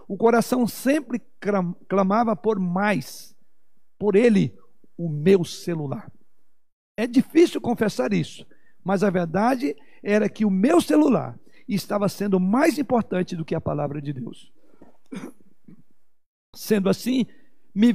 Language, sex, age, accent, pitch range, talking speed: Portuguese, male, 60-79, Brazilian, 190-230 Hz, 120 wpm